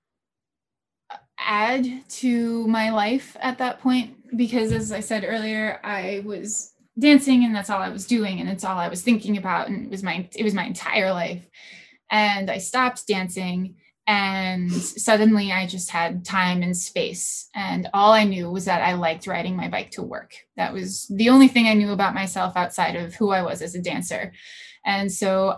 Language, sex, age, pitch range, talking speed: English, female, 10-29, 185-230 Hz, 190 wpm